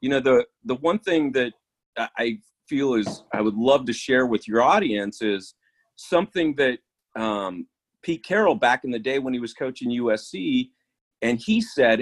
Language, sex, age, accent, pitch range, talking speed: English, male, 40-59, American, 120-170 Hz, 180 wpm